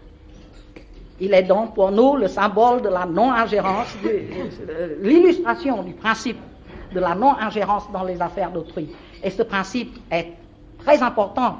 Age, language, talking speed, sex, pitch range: 60-79, French, 145 wpm, female, 190-260 Hz